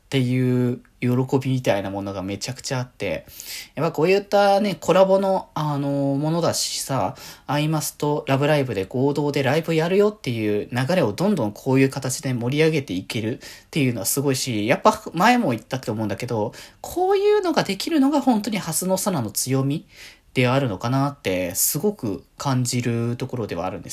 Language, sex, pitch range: Japanese, male, 115-165 Hz